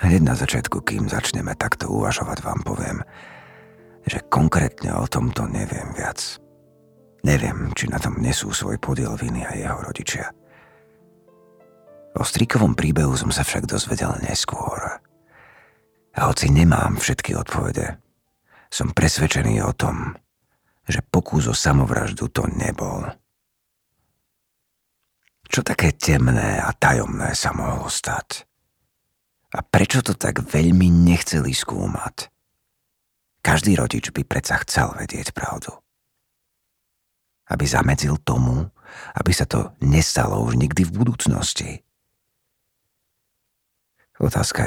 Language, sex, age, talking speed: Slovak, male, 50-69, 110 wpm